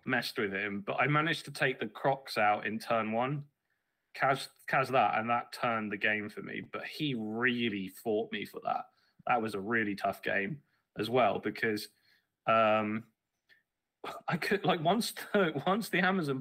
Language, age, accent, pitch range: English, 20-39, British, 110-145 Hz